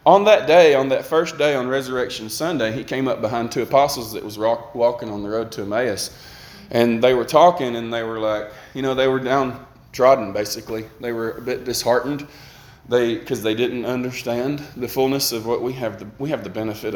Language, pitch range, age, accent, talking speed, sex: English, 110-140 Hz, 20-39, American, 210 wpm, male